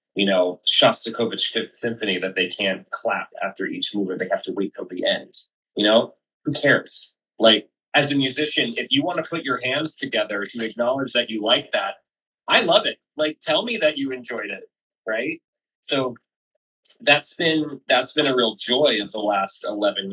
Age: 30-49